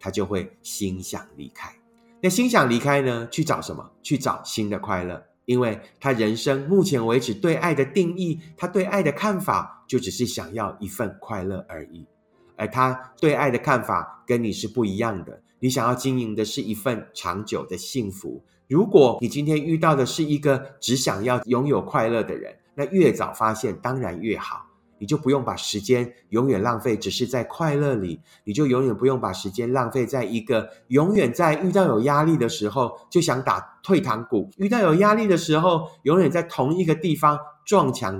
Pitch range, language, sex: 110-155 Hz, Chinese, male